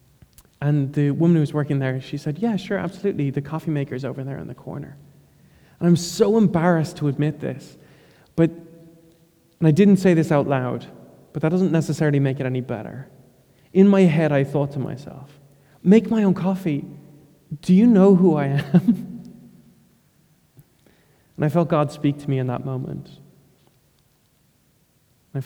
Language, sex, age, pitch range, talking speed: English, male, 20-39, 140-165 Hz, 165 wpm